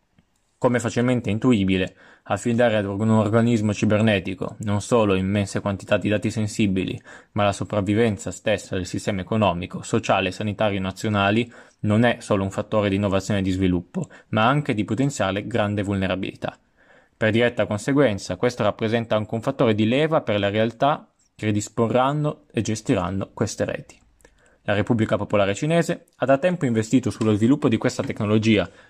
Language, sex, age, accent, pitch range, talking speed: Italian, male, 20-39, native, 105-120 Hz, 155 wpm